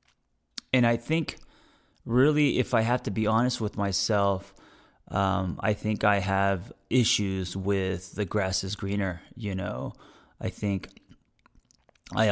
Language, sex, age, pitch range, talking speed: English, male, 30-49, 95-110 Hz, 135 wpm